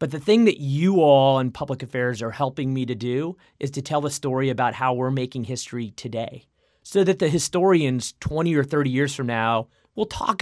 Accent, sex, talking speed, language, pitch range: American, male, 215 wpm, English, 120-145 Hz